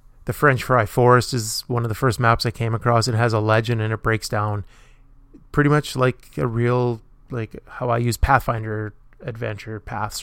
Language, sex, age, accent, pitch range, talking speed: English, male, 20-39, American, 110-125 Hz, 195 wpm